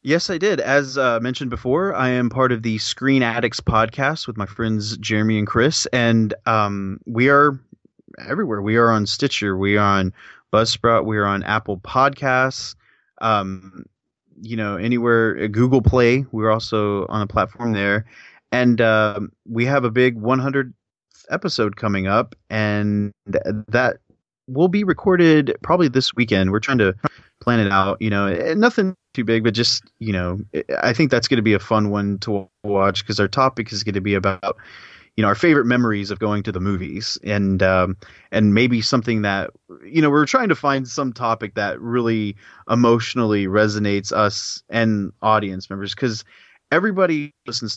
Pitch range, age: 100-125 Hz, 20-39